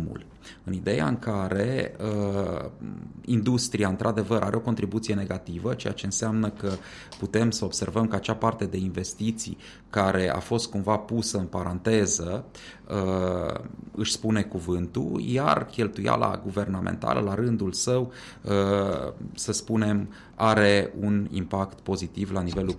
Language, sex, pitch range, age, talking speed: Romanian, male, 90-110 Hz, 30-49, 130 wpm